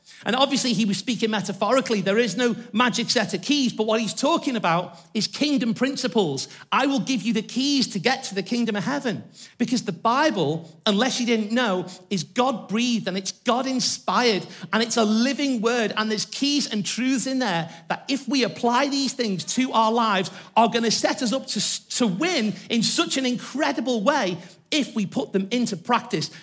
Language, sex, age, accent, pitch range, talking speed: English, male, 40-59, British, 190-245 Hz, 195 wpm